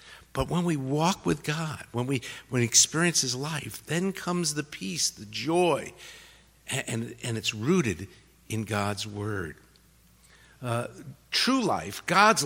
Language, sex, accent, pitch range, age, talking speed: English, male, American, 145-195 Hz, 50-69, 140 wpm